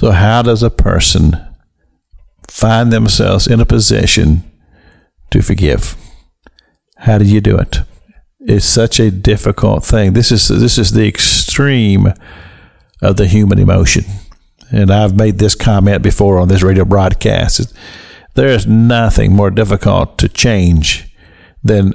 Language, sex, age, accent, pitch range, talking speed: English, male, 50-69, American, 95-120 Hz, 135 wpm